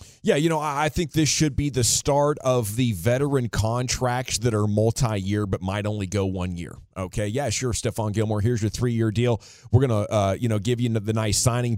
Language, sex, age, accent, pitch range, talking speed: English, male, 30-49, American, 105-125 Hz, 220 wpm